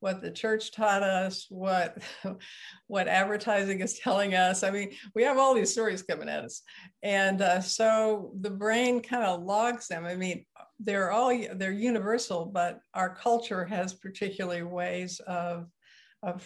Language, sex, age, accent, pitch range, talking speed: English, female, 60-79, American, 185-220 Hz, 160 wpm